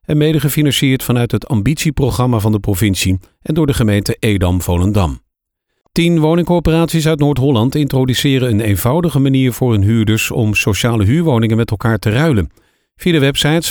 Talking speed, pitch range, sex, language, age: 155 wpm, 110-150 Hz, male, Dutch, 50-69